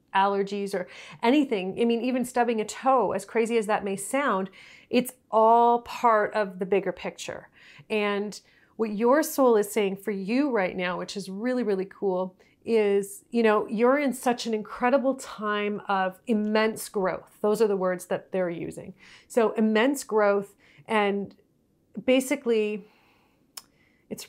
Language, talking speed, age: English, 155 wpm, 30-49